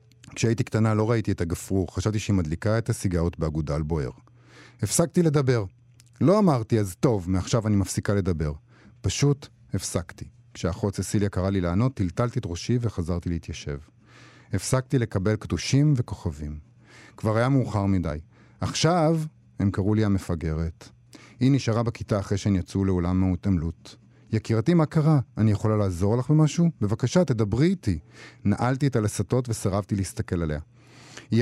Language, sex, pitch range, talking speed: Hebrew, male, 100-130 Hz, 140 wpm